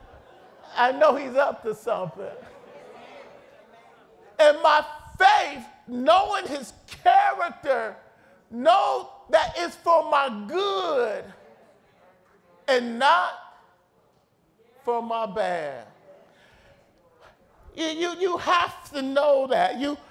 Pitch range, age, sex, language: 285-355 Hz, 50-69, male, English